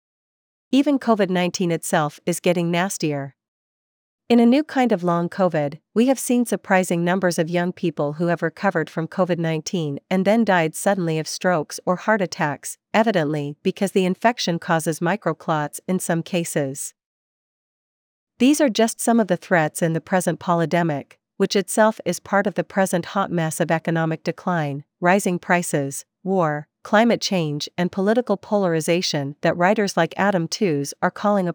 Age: 40-59